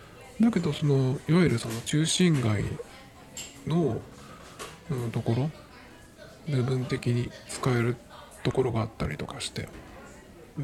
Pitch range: 115-160 Hz